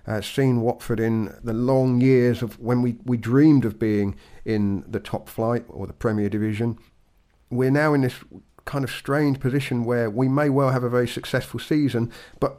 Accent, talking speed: British, 190 wpm